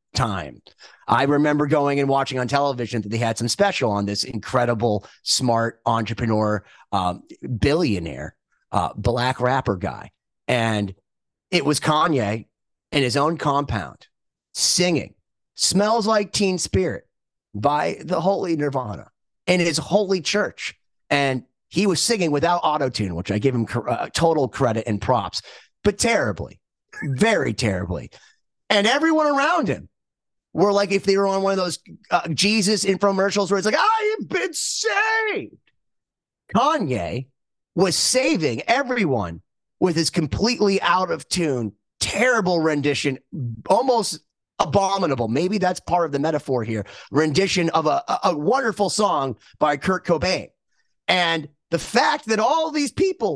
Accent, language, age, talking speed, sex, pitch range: American, English, 30-49, 140 wpm, male, 125-205 Hz